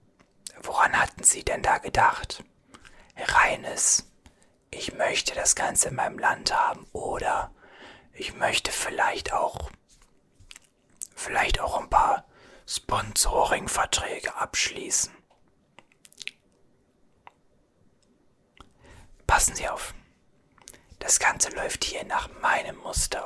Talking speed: 95 wpm